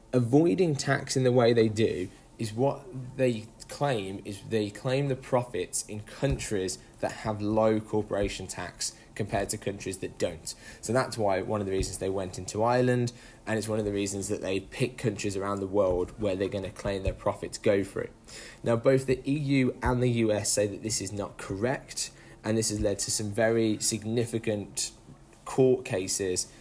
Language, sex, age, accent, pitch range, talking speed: English, male, 10-29, British, 100-120 Hz, 190 wpm